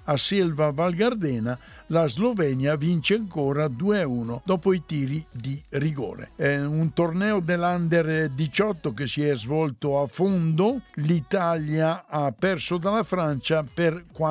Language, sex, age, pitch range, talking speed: Italian, male, 60-79, 140-175 Hz, 125 wpm